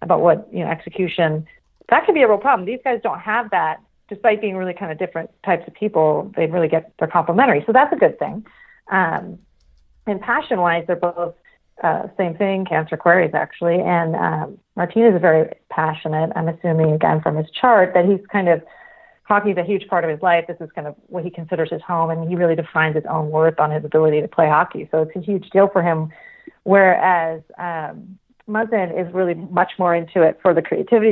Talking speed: 210 wpm